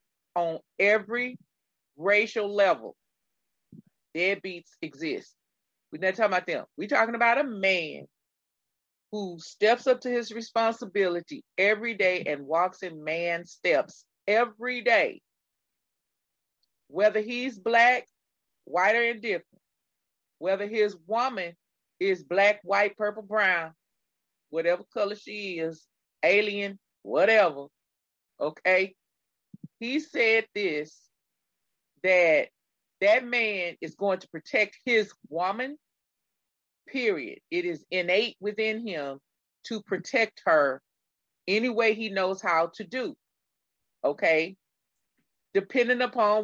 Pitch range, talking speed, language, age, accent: 175-230 Hz, 105 wpm, English, 30-49, American